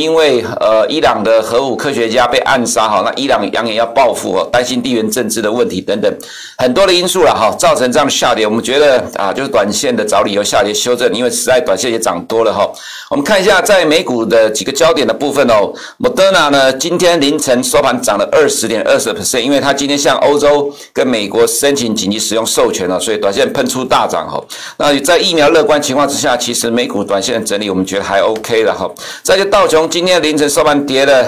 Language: Chinese